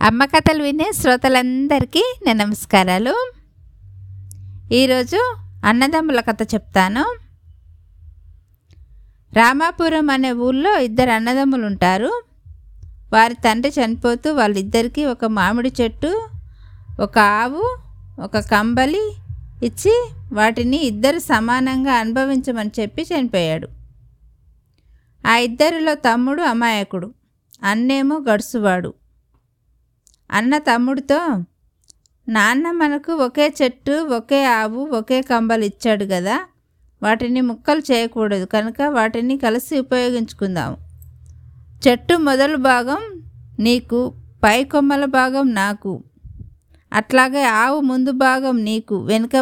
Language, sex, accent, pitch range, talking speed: Telugu, female, native, 205-275 Hz, 85 wpm